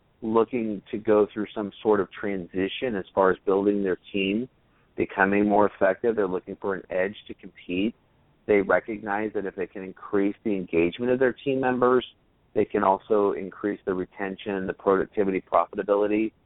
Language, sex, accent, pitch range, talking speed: English, male, American, 95-110 Hz, 170 wpm